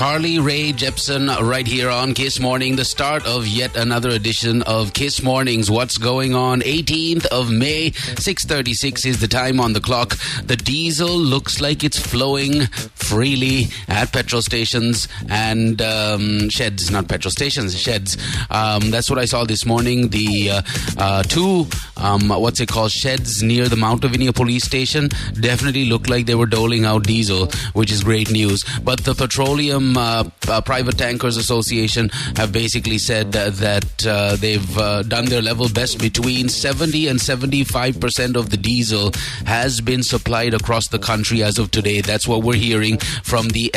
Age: 30-49